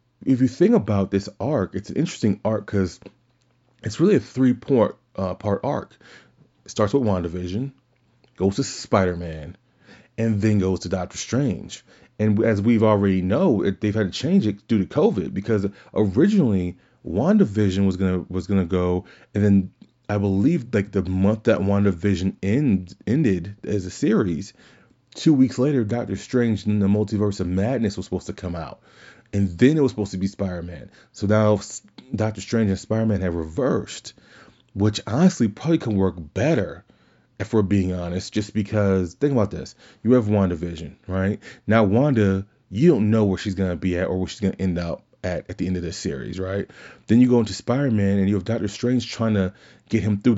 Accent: American